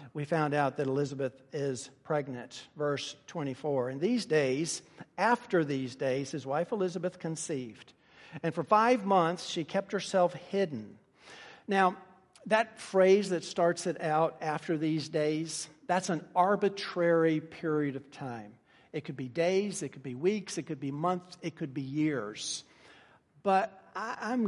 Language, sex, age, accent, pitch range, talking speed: English, male, 50-69, American, 150-185 Hz, 150 wpm